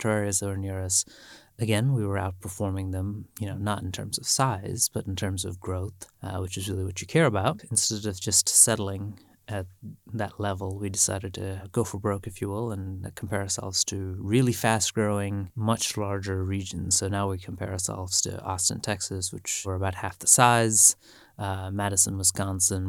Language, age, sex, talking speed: English, 30-49, male, 190 wpm